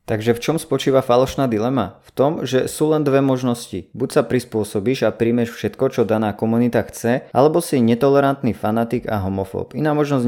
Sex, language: male, Slovak